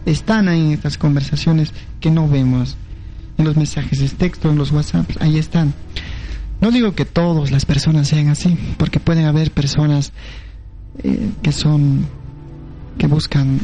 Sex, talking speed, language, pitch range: male, 150 wpm, Spanish, 140-170 Hz